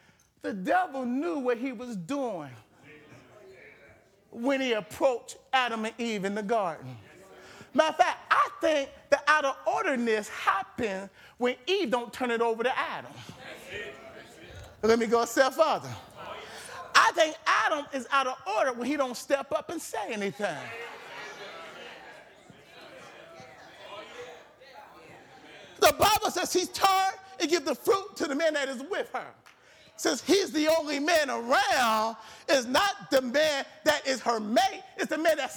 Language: English